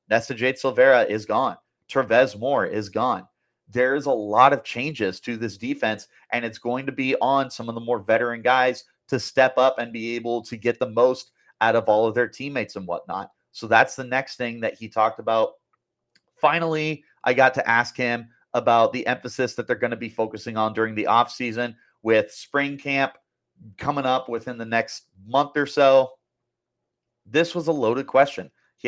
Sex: male